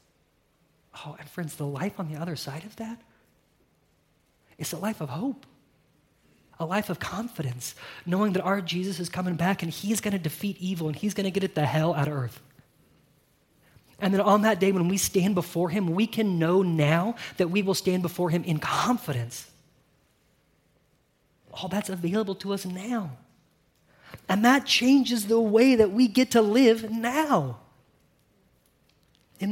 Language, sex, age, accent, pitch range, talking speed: English, male, 30-49, American, 145-200 Hz, 175 wpm